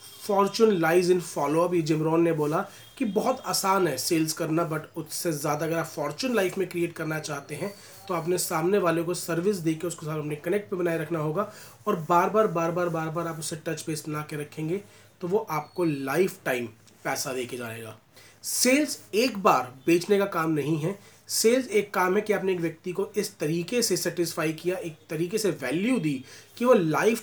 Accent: native